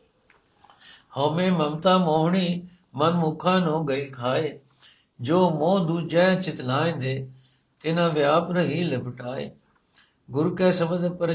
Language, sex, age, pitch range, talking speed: Punjabi, male, 60-79, 130-165 Hz, 110 wpm